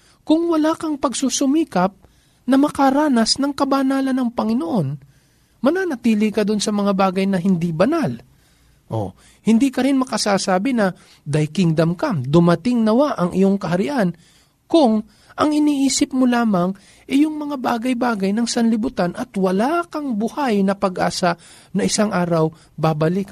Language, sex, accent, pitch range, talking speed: Filipino, male, native, 175-265 Hz, 145 wpm